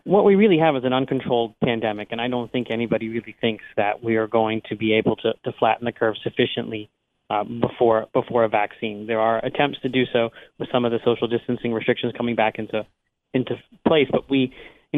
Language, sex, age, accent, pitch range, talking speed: English, male, 30-49, American, 115-130 Hz, 215 wpm